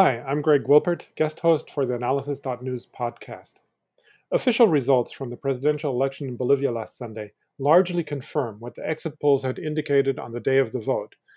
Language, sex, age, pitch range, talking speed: English, male, 40-59, 135-165 Hz, 180 wpm